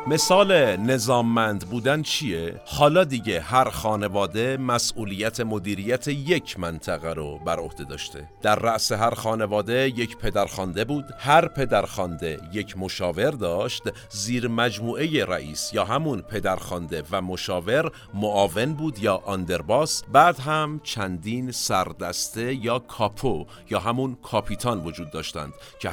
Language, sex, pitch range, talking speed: Persian, male, 90-125 Hz, 120 wpm